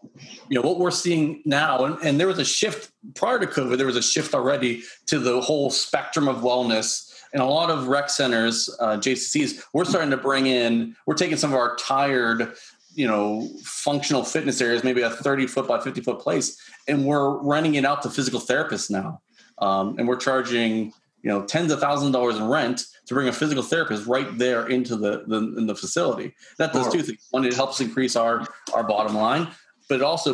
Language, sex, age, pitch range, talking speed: English, male, 30-49, 115-140 Hz, 205 wpm